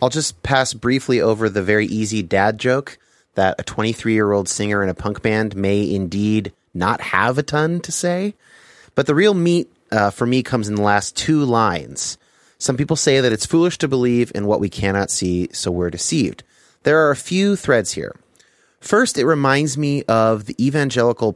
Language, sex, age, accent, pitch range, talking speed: English, male, 30-49, American, 105-140 Hz, 190 wpm